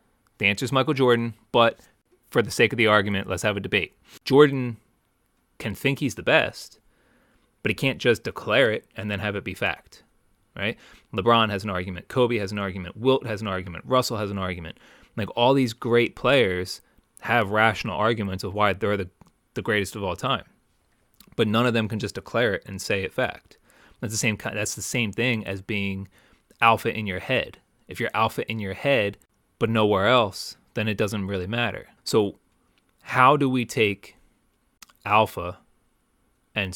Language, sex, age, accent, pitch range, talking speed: English, male, 30-49, American, 100-120 Hz, 190 wpm